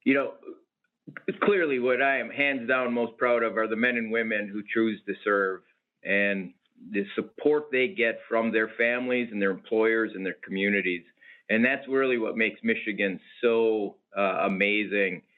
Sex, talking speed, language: male, 170 wpm, English